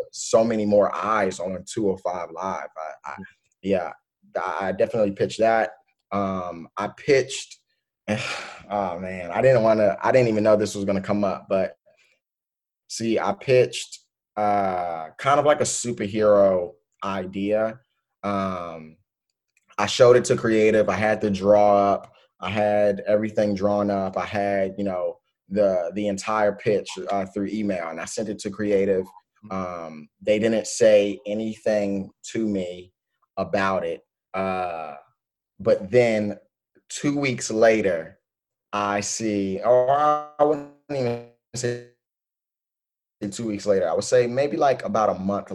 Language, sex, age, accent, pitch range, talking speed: English, male, 20-39, American, 95-115 Hz, 145 wpm